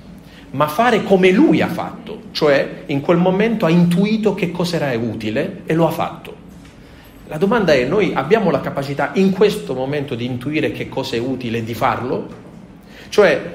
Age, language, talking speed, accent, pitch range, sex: 40-59, Italian, 175 wpm, native, 120-165 Hz, male